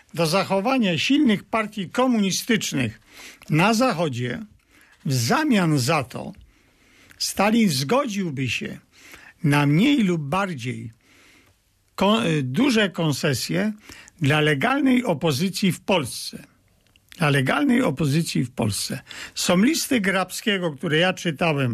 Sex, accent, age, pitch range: male, native, 50-69, 145-215 Hz